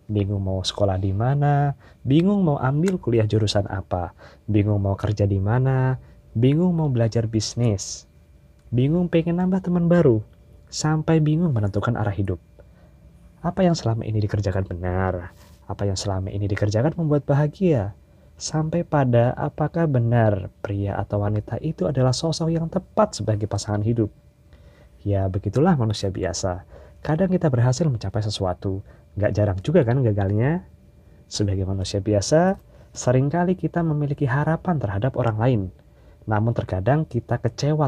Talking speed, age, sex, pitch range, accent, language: 135 wpm, 20-39, male, 100-145 Hz, native, Indonesian